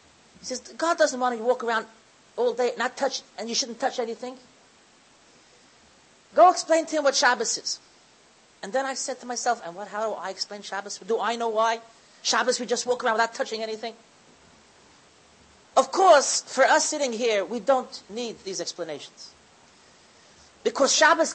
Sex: male